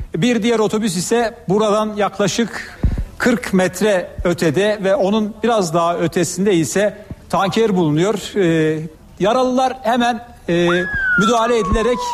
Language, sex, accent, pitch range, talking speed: Turkish, male, native, 175-225 Hz, 115 wpm